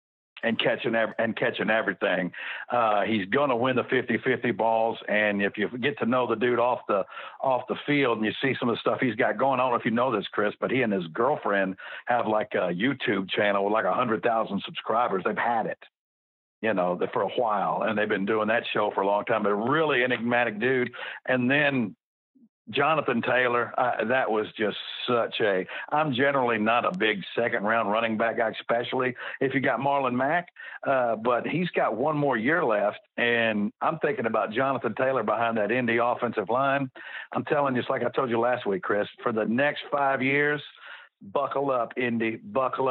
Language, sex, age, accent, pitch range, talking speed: English, male, 60-79, American, 110-130 Hz, 200 wpm